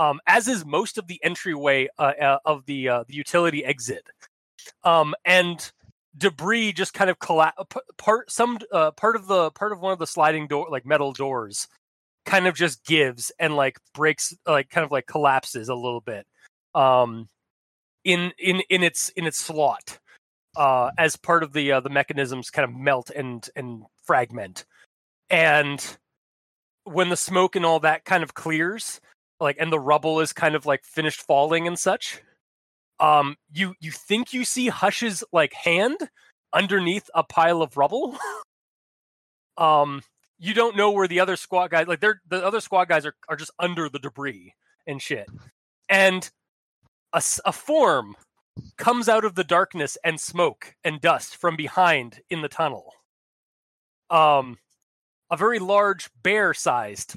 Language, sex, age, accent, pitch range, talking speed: English, male, 30-49, American, 145-190 Hz, 165 wpm